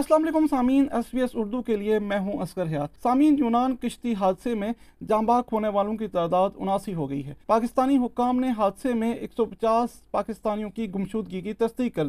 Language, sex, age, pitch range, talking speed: Urdu, male, 40-59, 205-245 Hz, 205 wpm